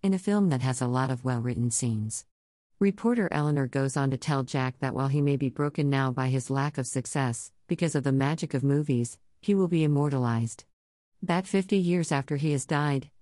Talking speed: 210 wpm